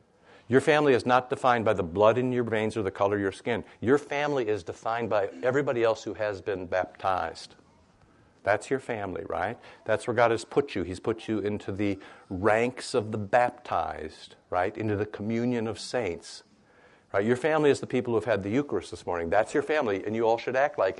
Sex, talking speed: male, 215 wpm